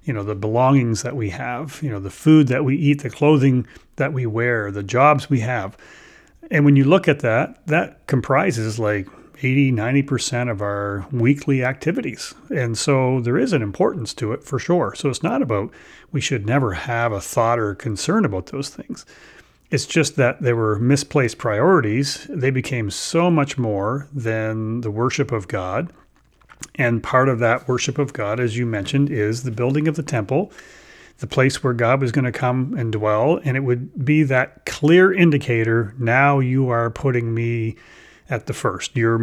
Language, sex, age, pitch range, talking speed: English, male, 30-49, 115-145 Hz, 185 wpm